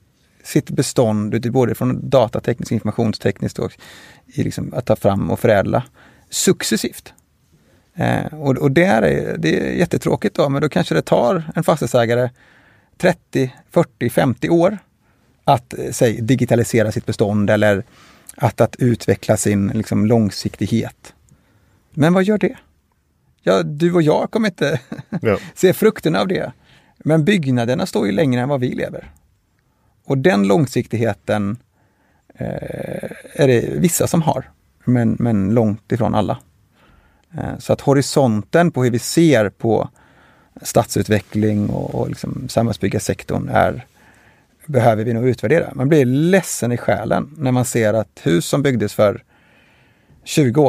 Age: 30-49